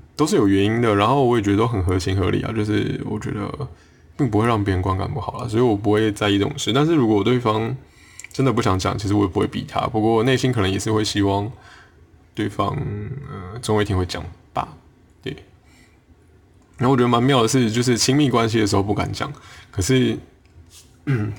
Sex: male